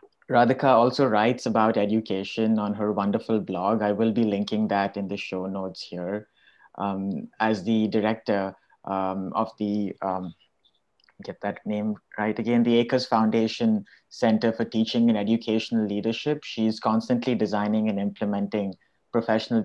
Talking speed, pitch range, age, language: 145 wpm, 100-115 Hz, 30-49, English